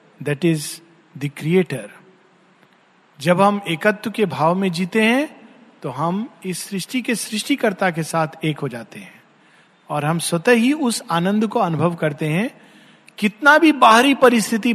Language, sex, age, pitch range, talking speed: Hindi, male, 50-69, 165-220 Hz, 155 wpm